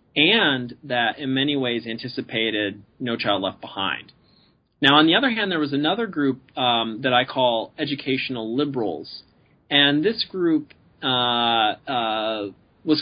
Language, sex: English, male